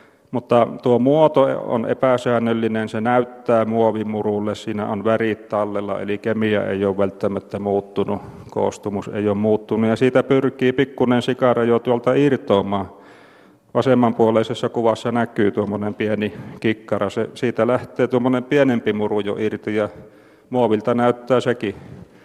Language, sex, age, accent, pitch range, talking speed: Finnish, male, 40-59, native, 105-125 Hz, 130 wpm